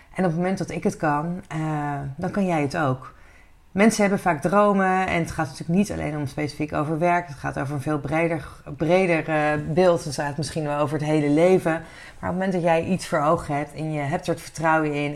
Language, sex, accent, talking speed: Dutch, female, Dutch, 245 wpm